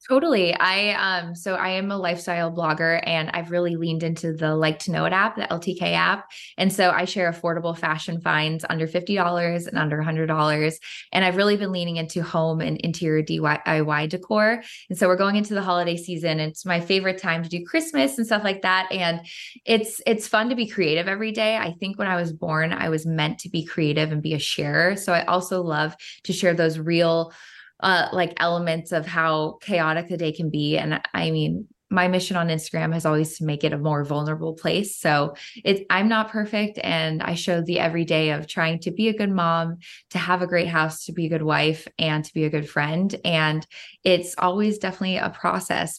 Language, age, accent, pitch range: English, 20-39, American, 160-185 Hz